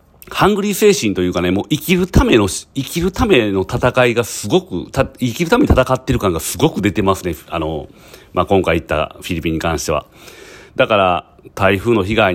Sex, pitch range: male, 90-120 Hz